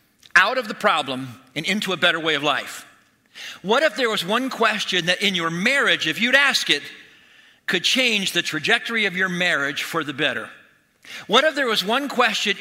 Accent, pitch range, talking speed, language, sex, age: American, 155-215 Hz, 195 wpm, English, male, 50-69